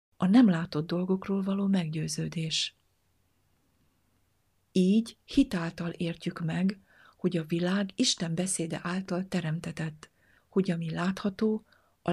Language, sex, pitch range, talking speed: Hungarian, female, 160-195 Hz, 105 wpm